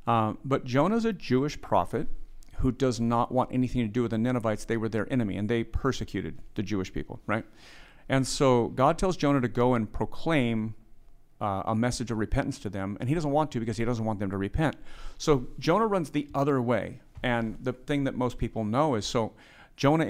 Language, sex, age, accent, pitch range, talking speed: English, male, 40-59, American, 110-135 Hz, 210 wpm